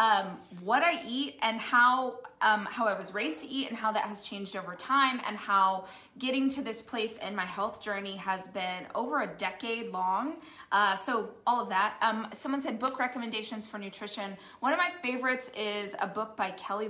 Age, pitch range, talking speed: 20-39, 200-250 Hz, 200 wpm